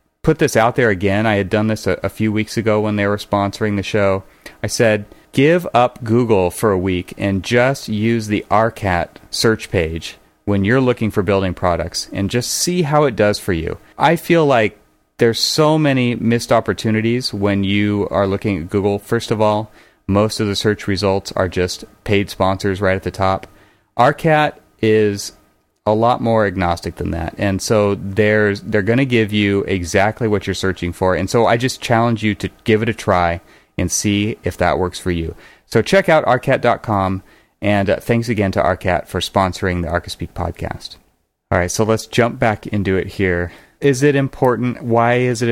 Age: 30-49